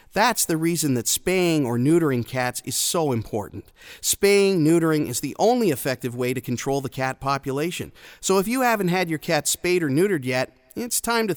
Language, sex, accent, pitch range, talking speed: English, male, American, 125-165 Hz, 195 wpm